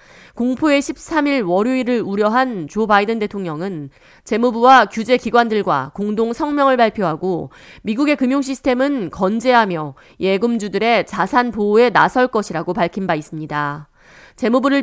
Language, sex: Korean, female